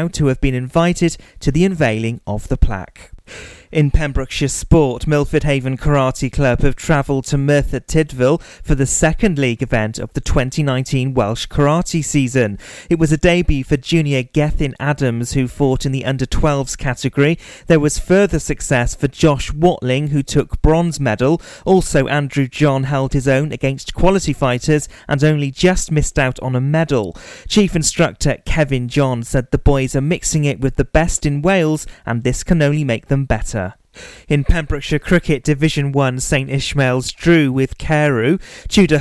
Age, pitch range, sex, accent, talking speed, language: 30-49, 130-155 Hz, male, British, 170 wpm, English